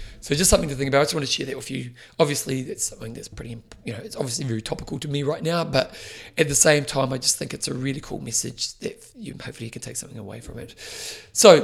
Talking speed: 275 wpm